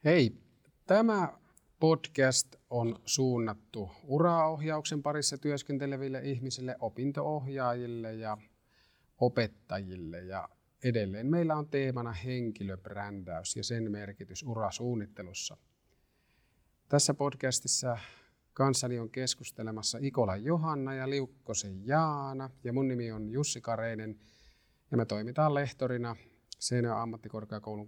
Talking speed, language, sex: 95 wpm, Finnish, male